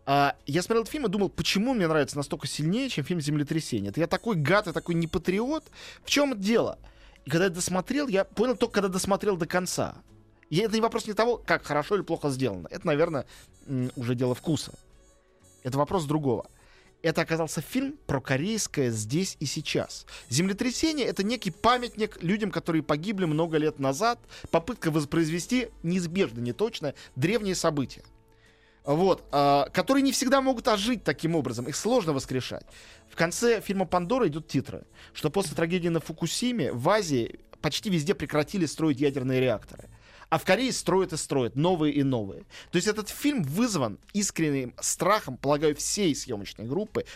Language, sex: Russian, male